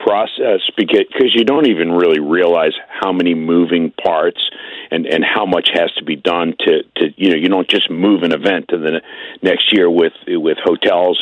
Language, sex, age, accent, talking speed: English, male, 50-69, American, 195 wpm